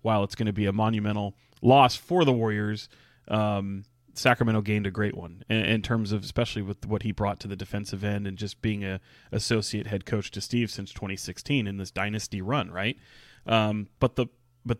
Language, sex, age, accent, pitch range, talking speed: English, male, 30-49, American, 100-120 Hz, 205 wpm